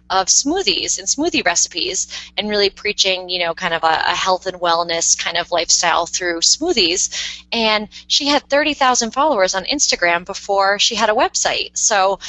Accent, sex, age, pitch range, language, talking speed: American, female, 20-39, 175-230 Hz, English, 170 wpm